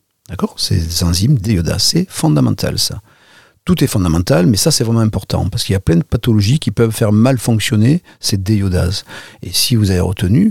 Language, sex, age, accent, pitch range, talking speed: French, male, 50-69, French, 100-125 Hz, 200 wpm